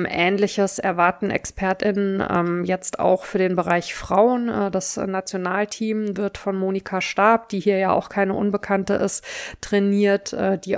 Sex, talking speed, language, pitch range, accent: female, 145 wpm, German, 185-215 Hz, German